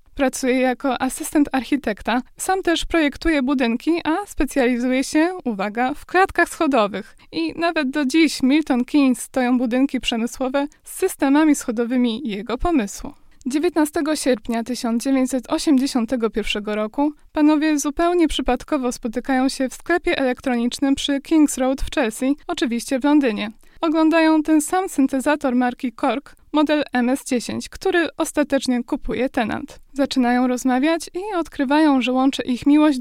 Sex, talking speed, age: female, 125 wpm, 20-39